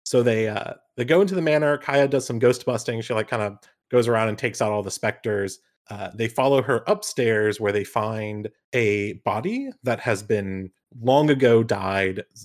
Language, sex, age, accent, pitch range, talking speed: English, male, 30-49, American, 105-135 Hz, 200 wpm